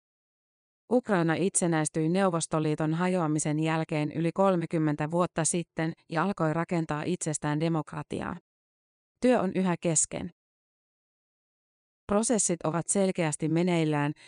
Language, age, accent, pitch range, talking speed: Finnish, 30-49, native, 155-185 Hz, 90 wpm